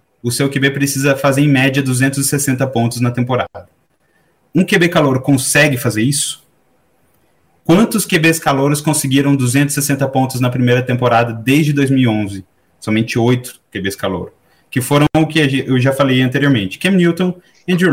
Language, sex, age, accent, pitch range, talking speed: Portuguese, male, 20-39, Brazilian, 120-155 Hz, 145 wpm